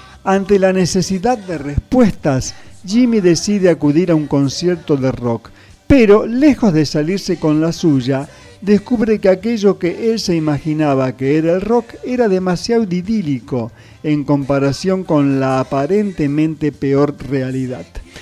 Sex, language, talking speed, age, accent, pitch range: male, Spanish, 135 wpm, 50-69, Argentinian, 145-215 Hz